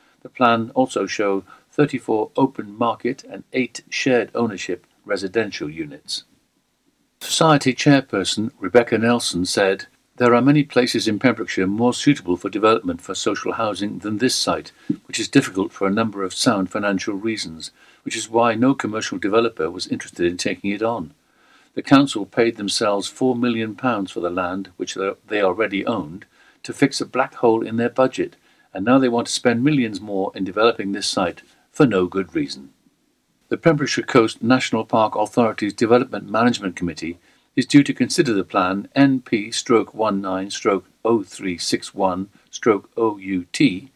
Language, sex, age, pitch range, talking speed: English, male, 50-69, 95-130 Hz, 150 wpm